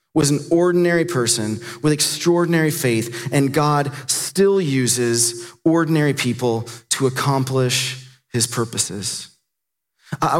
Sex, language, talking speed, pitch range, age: male, English, 105 wpm, 125-165 Hz, 30-49